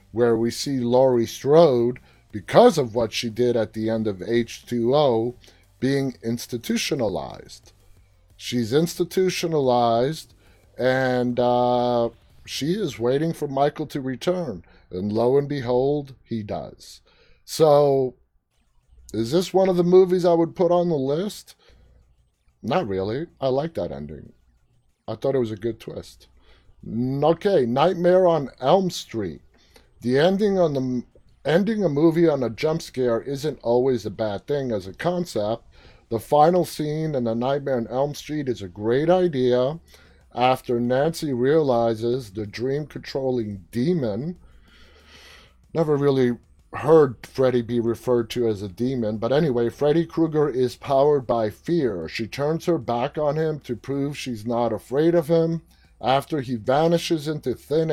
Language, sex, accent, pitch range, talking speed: English, male, American, 115-155 Hz, 145 wpm